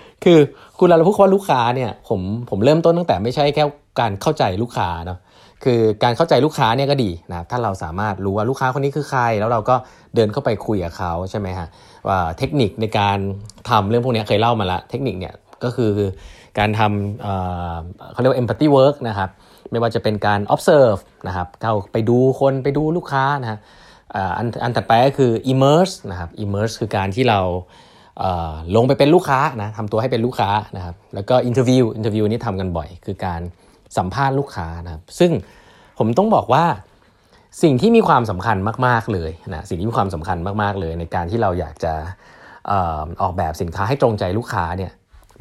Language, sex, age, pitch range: Thai, male, 20-39, 95-130 Hz